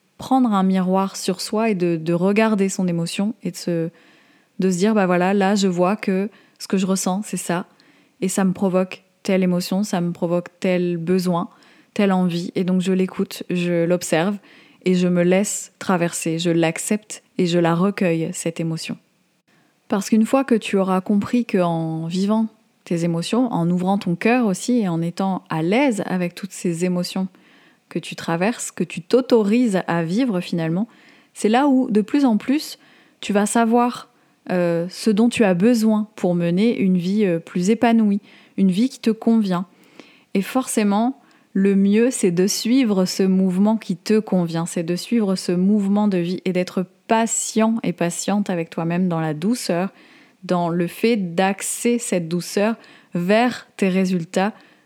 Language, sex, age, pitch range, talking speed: French, female, 20-39, 180-220 Hz, 175 wpm